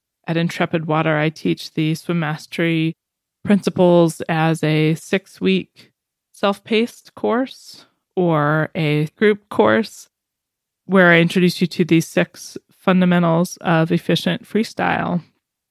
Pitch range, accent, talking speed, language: 155-185 Hz, American, 110 wpm, English